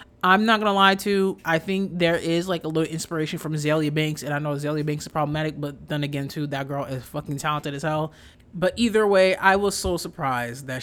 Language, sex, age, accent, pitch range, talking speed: English, male, 20-39, American, 150-220 Hz, 240 wpm